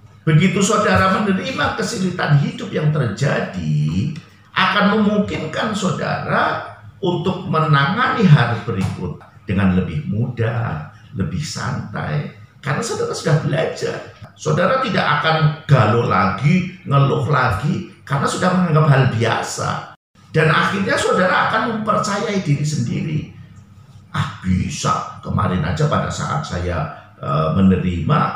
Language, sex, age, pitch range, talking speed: Indonesian, male, 50-69, 115-180 Hz, 110 wpm